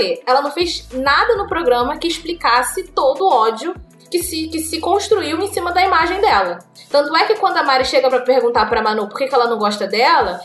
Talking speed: 220 wpm